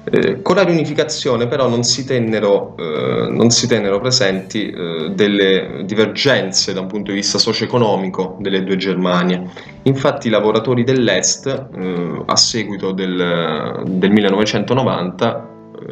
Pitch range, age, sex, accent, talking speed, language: 95-120 Hz, 20-39, male, native, 130 wpm, Italian